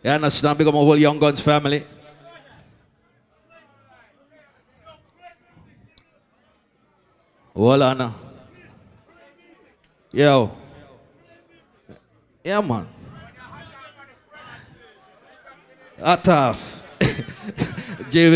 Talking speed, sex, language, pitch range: 50 wpm, male, English, 165-220 Hz